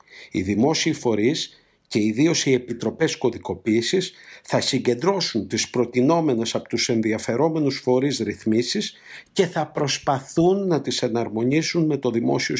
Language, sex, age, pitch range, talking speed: Greek, male, 50-69, 125-160 Hz, 125 wpm